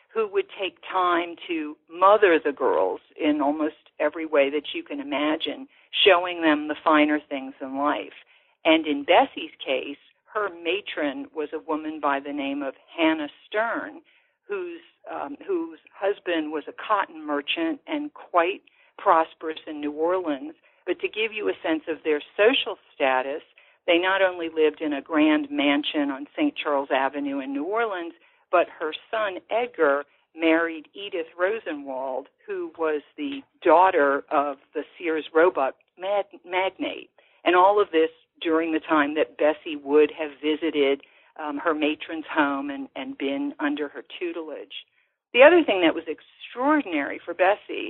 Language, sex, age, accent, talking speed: English, female, 50-69, American, 155 wpm